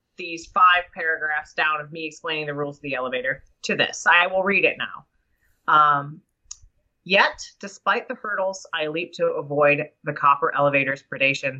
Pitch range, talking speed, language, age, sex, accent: 150-205 Hz, 165 wpm, English, 30-49, female, American